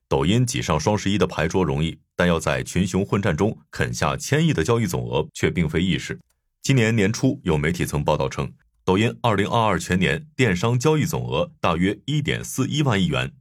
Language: Chinese